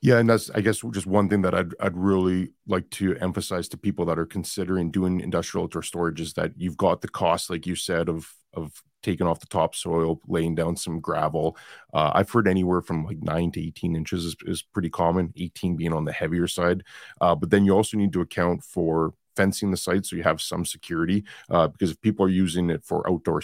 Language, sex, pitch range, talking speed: English, male, 85-100 Hz, 225 wpm